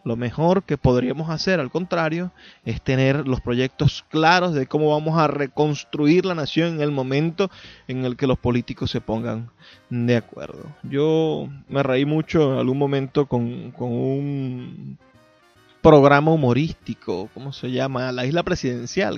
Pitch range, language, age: 125-150 Hz, Spanish, 20-39